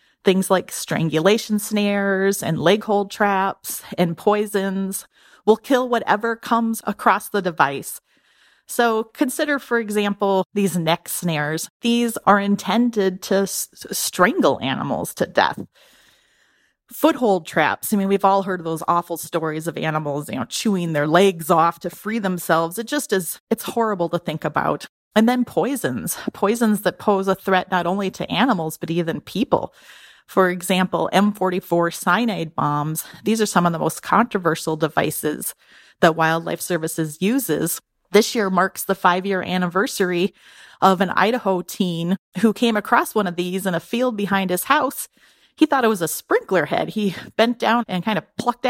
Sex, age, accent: female, 30-49, American